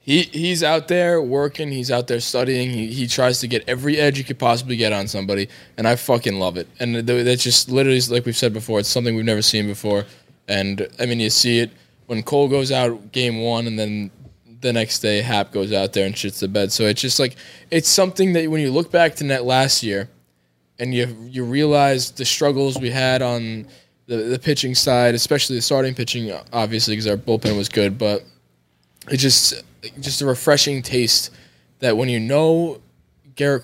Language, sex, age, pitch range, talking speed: English, male, 10-29, 115-145 Hz, 210 wpm